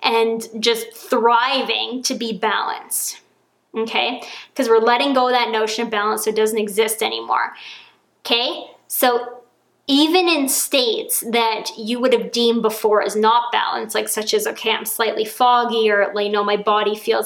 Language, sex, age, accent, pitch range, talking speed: English, female, 20-39, American, 220-255 Hz, 165 wpm